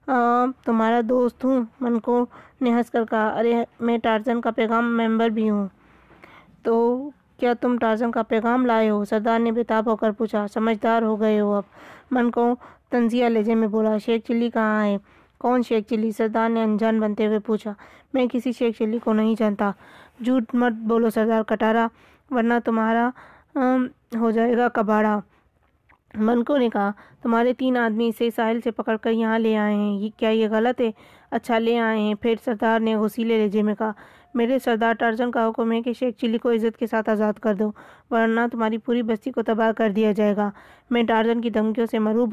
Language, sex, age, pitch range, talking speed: Urdu, female, 20-39, 220-240 Hz, 190 wpm